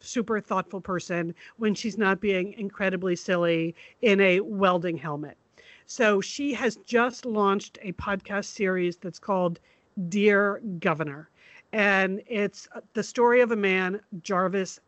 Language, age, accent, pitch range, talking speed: English, 50-69, American, 180-220 Hz, 135 wpm